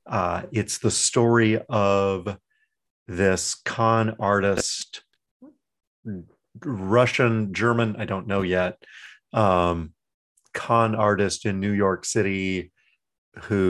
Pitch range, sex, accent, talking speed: 90-115 Hz, male, American, 95 wpm